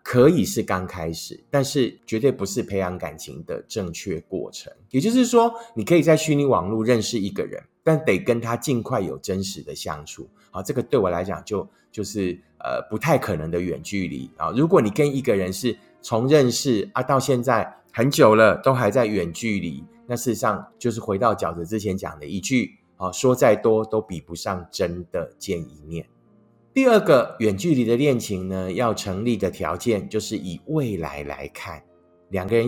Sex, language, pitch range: male, Chinese, 95-130 Hz